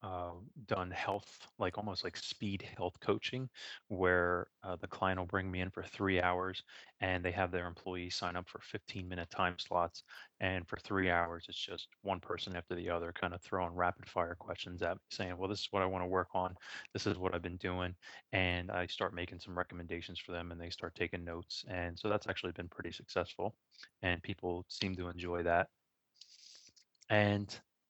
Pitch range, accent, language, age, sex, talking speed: 90-100 Hz, American, English, 20-39, male, 200 wpm